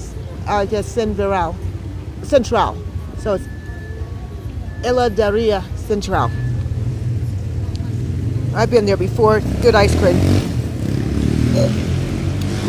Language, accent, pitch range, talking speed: English, American, 105-140 Hz, 75 wpm